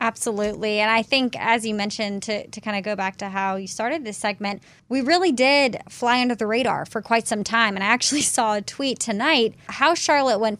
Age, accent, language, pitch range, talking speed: 20-39, American, English, 215-255 Hz, 220 wpm